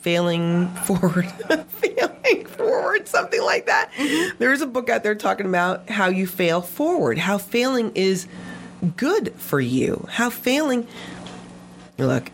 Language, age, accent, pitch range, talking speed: English, 30-49, American, 135-220 Hz, 135 wpm